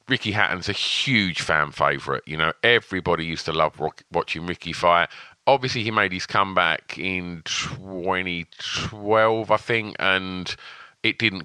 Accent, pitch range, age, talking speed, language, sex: British, 85-105 Hz, 40-59, 145 wpm, English, male